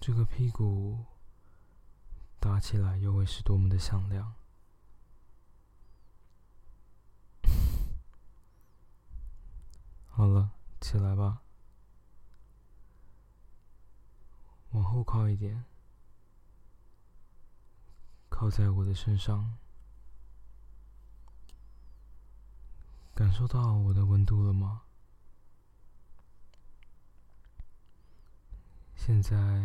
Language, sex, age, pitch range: Chinese, male, 20-39, 95-105 Hz